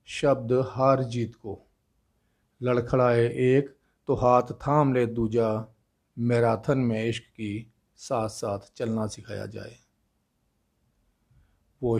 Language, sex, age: Hindi, male, 40-59